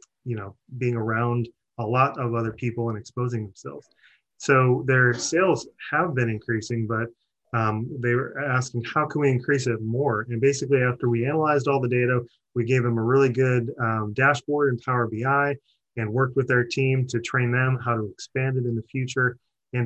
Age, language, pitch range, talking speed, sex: 20-39, English, 115-135 Hz, 195 wpm, male